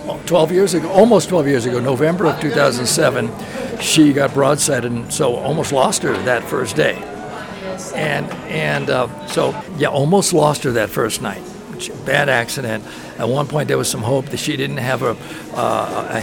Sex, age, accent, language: male, 60-79, American, English